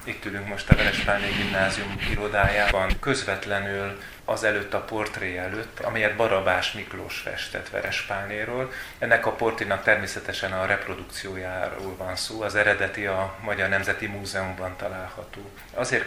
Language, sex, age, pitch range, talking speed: Hungarian, male, 30-49, 100-110 Hz, 125 wpm